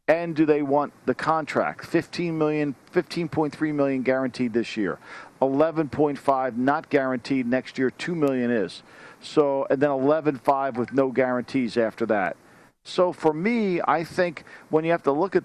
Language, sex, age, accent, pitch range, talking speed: English, male, 50-69, American, 135-165 Hz, 160 wpm